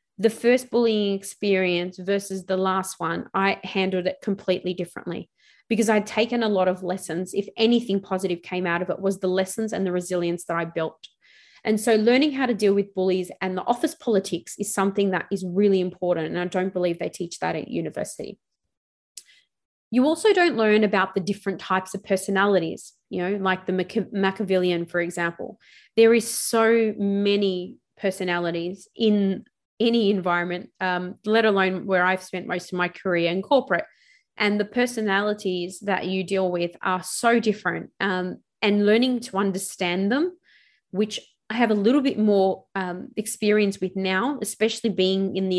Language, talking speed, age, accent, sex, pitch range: English, 170 wpm, 20-39, Australian, female, 185-220 Hz